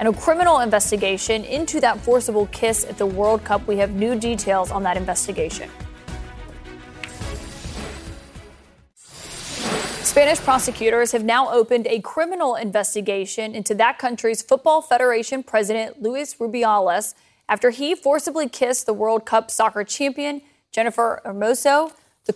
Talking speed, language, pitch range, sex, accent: 125 wpm, English, 210-260 Hz, female, American